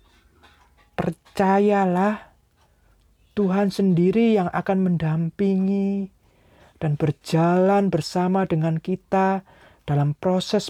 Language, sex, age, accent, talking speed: Indonesian, male, 40-59, native, 75 wpm